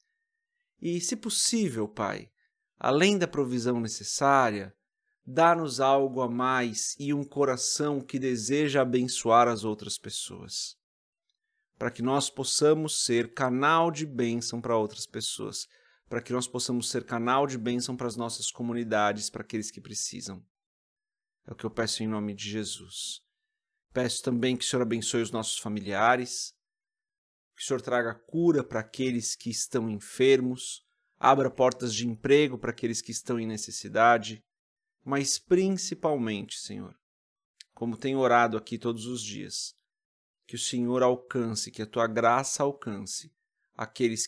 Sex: male